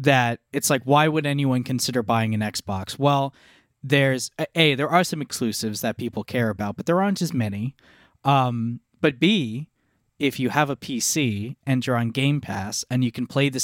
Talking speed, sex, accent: 195 wpm, male, American